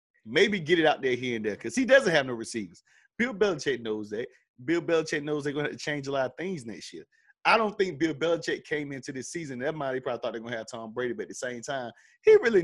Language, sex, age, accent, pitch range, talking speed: English, male, 30-49, American, 120-180 Hz, 280 wpm